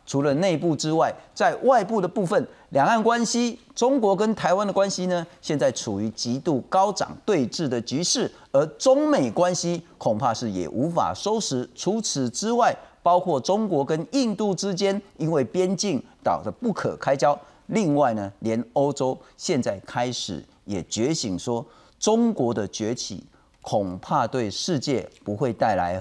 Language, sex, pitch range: Chinese, male, 120-195 Hz